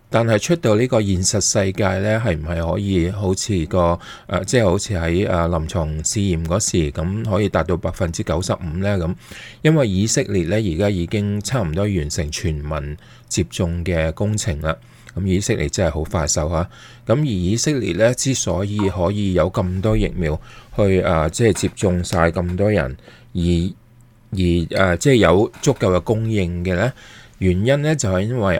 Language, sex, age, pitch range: English, male, 20-39, 85-110 Hz